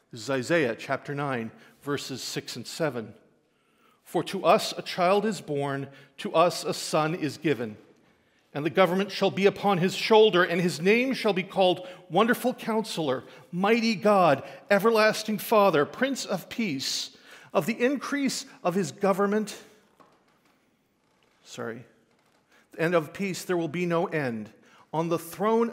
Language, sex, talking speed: English, male, 145 wpm